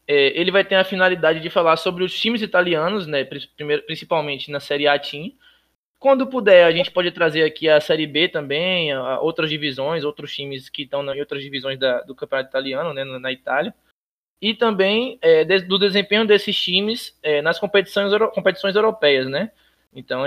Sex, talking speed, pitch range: male, 180 wpm, 140-185 Hz